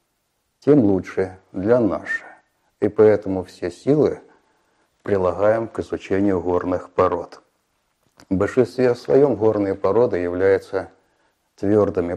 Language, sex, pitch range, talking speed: Russian, male, 95-145 Hz, 100 wpm